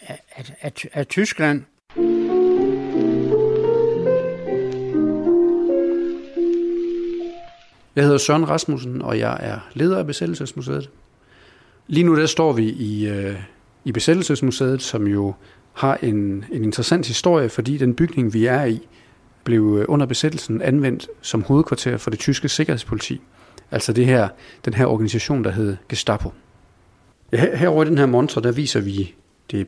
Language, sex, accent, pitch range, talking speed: Danish, male, native, 110-150 Hz, 125 wpm